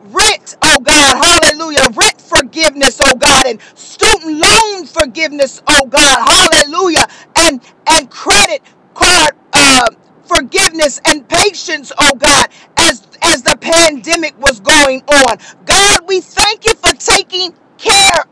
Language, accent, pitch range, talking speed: English, American, 290-360 Hz, 130 wpm